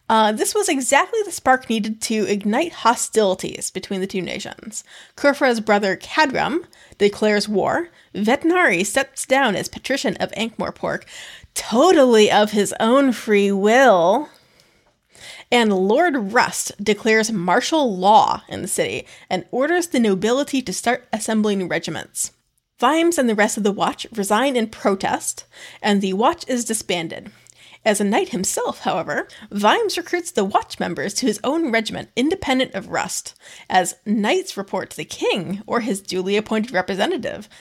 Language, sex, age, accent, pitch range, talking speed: English, female, 30-49, American, 200-270 Hz, 145 wpm